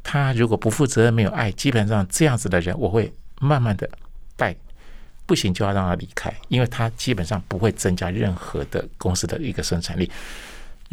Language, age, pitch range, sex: Chinese, 60-79, 95-140 Hz, male